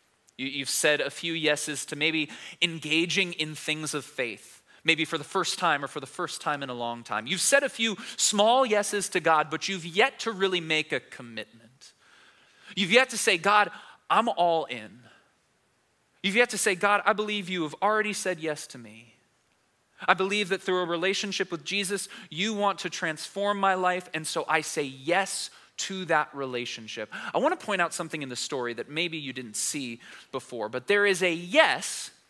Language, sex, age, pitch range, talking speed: English, male, 20-39, 150-205 Hz, 195 wpm